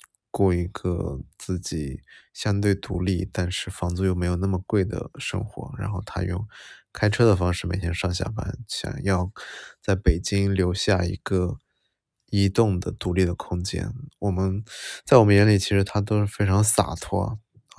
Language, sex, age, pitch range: Chinese, male, 20-39, 90-100 Hz